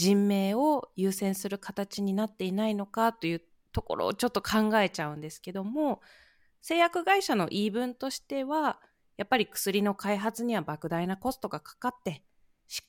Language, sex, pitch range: Japanese, female, 180-270 Hz